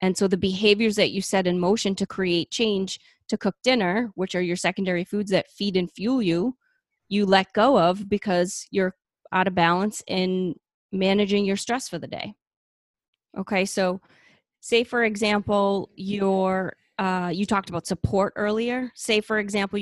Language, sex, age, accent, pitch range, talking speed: English, female, 30-49, American, 180-205 Hz, 165 wpm